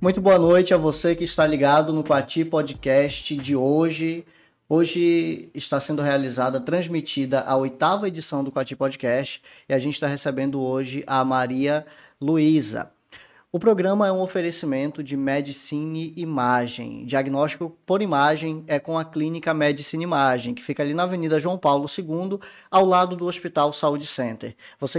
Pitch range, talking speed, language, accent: 145-170 Hz, 155 wpm, Portuguese, Brazilian